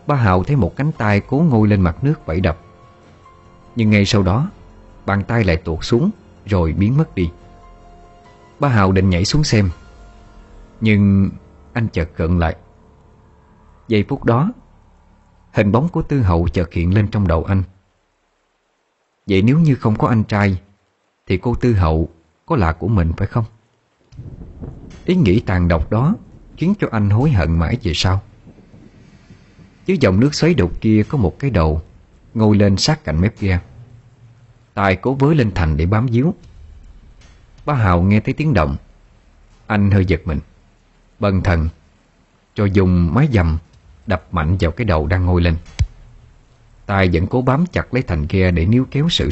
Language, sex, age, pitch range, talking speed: Vietnamese, male, 30-49, 85-115 Hz, 170 wpm